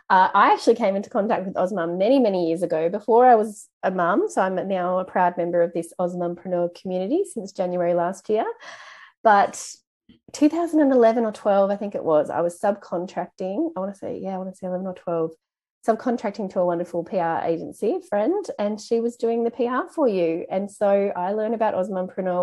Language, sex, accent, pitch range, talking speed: English, female, Australian, 180-220 Hz, 200 wpm